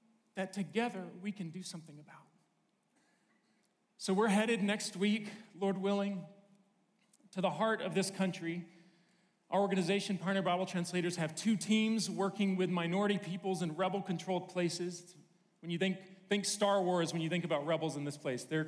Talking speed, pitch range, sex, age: 160 wpm, 165-205 Hz, male, 40-59